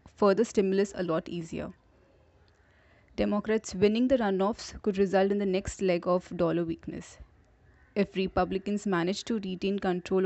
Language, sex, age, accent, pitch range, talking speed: English, female, 30-49, Indian, 170-205 Hz, 140 wpm